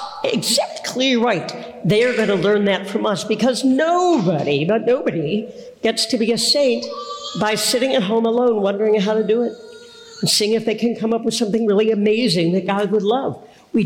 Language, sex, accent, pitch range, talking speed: English, female, American, 170-230 Hz, 190 wpm